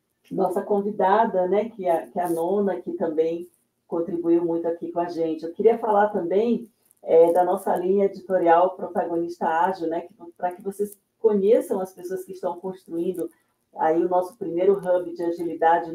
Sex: female